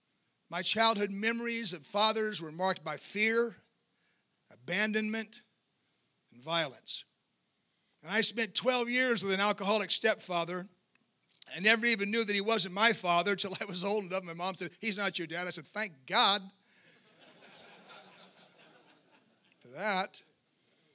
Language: English